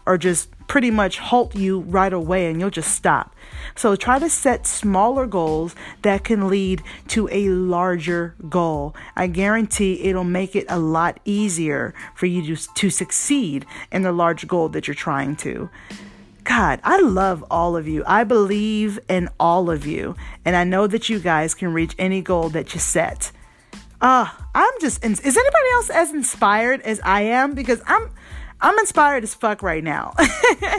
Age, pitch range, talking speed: 30-49, 185-260 Hz, 175 wpm